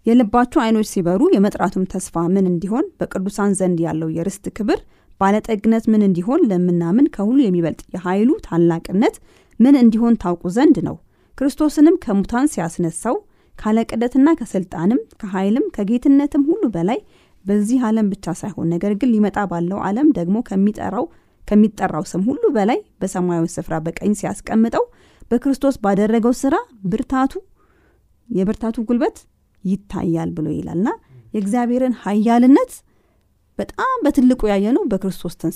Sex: female